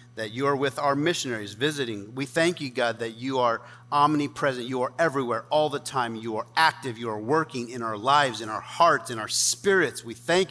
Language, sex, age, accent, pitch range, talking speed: English, male, 40-59, American, 125-180 Hz, 215 wpm